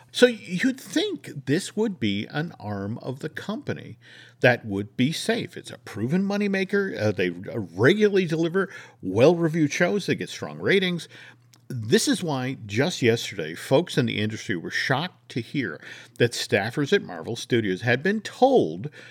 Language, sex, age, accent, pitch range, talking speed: English, male, 50-69, American, 120-195 Hz, 155 wpm